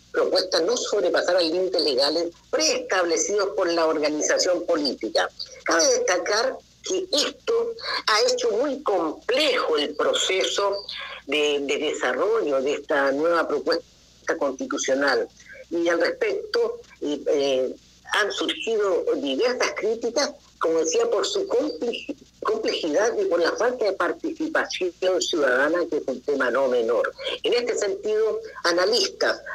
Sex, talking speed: female, 120 wpm